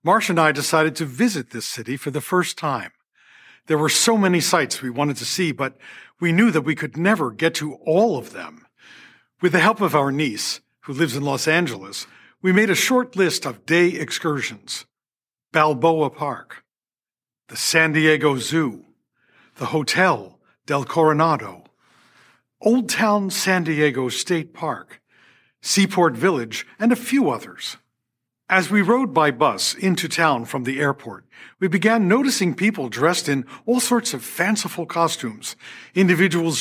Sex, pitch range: male, 145-200 Hz